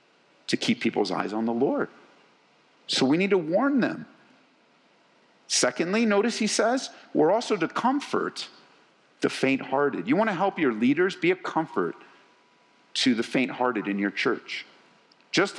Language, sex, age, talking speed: English, male, 50-69, 145 wpm